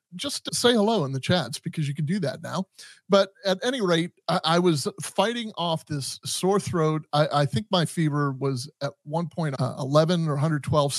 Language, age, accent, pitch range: English, 30-49, American, 140-175 Hz